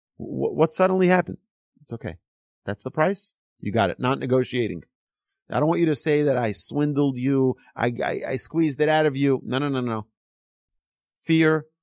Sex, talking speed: male, 185 wpm